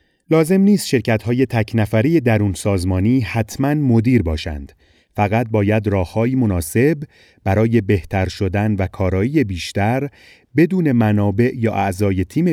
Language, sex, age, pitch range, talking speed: Persian, male, 30-49, 100-125 Hz, 120 wpm